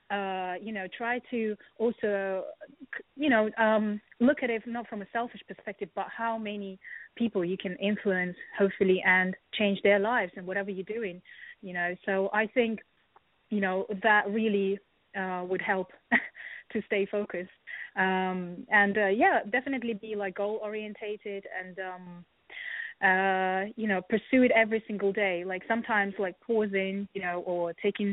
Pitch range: 190-220 Hz